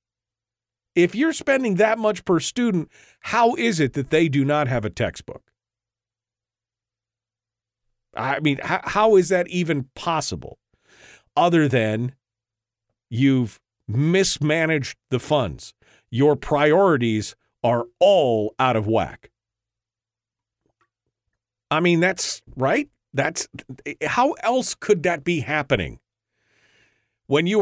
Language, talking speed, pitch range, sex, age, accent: English, 110 wpm, 120-190 Hz, male, 50-69, American